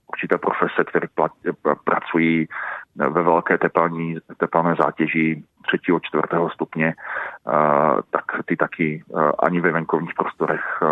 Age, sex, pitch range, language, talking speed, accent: 40-59, male, 75-85 Hz, Czech, 115 wpm, native